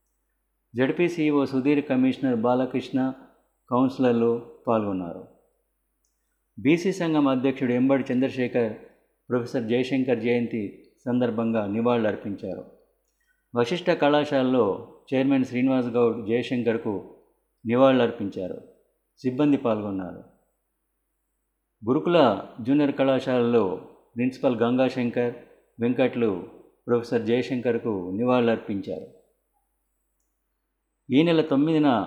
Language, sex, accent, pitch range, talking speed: Telugu, male, native, 115-135 Hz, 70 wpm